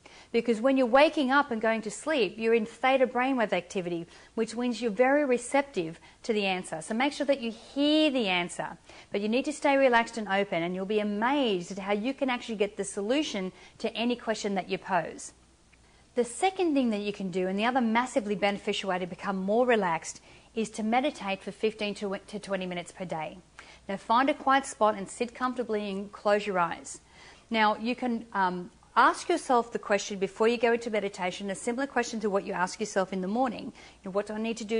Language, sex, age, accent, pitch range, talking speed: English, female, 40-59, Australian, 190-240 Hz, 215 wpm